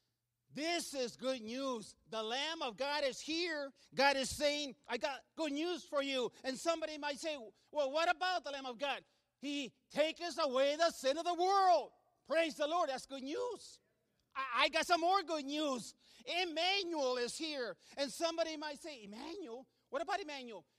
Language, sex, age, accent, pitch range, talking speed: English, male, 40-59, American, 260-345 Hz, 175 wpm